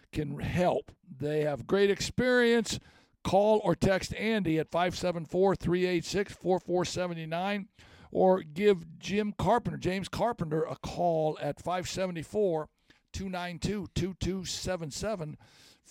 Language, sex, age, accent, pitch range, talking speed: English, male, 60-79, American, 165-195 Hz, 85 wpm